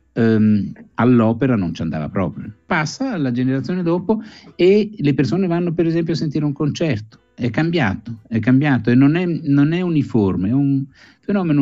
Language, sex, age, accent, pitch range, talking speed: Italian, male, 60-79, native, 95-135 Hz, 170 wpm